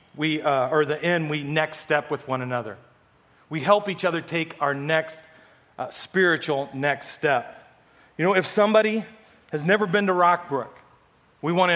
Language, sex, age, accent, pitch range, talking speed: English, male, 40-59, American, 135-180 Hz, 175 wpm